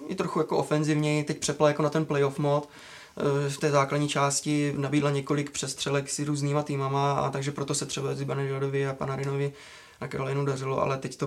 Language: Czech